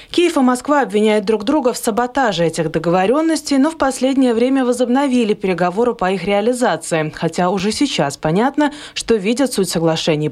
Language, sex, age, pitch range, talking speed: Russian, female, 20-39, 185-245 Hz, 155 wpm